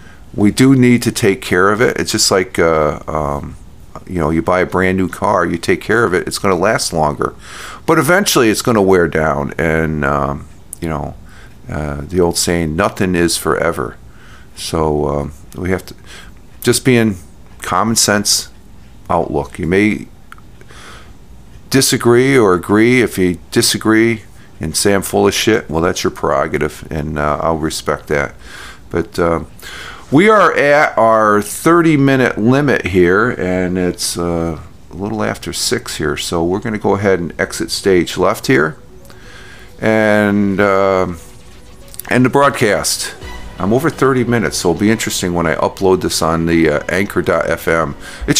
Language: English